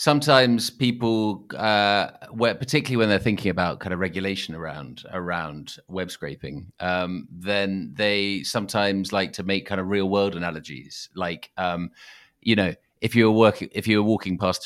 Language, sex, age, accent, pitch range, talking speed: English, male, 30-49, British, 90-110 Hz, 170 wpm